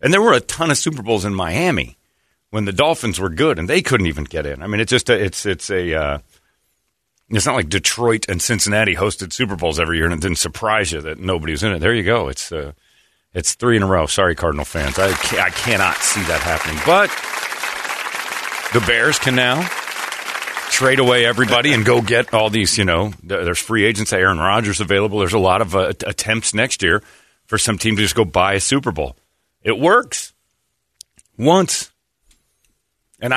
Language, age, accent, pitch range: English, 40-59, American, 90-115 Hz